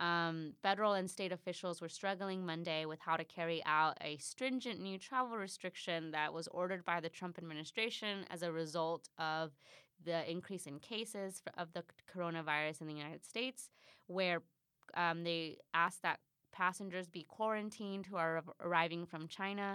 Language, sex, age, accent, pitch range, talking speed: English, female, 20-39, American, 165-190 Hz, 160 wpm